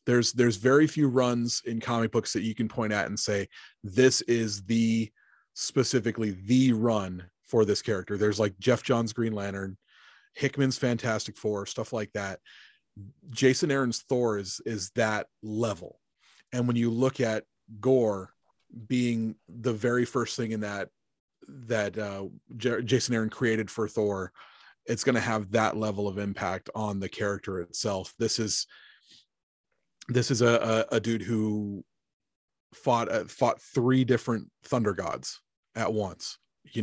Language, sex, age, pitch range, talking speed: English, male, 30-49, 105-120 Hz, 155 wpm